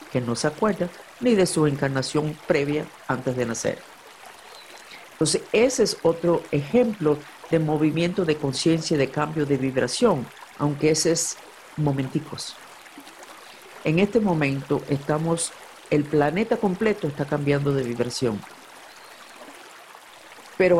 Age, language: 50-69, Spanish